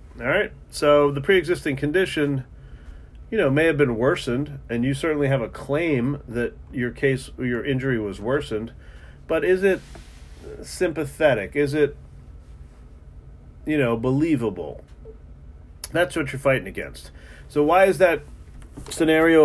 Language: English